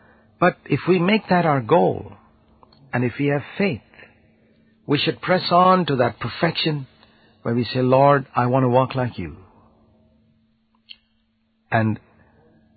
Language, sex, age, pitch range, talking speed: English, male, 60-79, 110-155 Hz, 140 wpm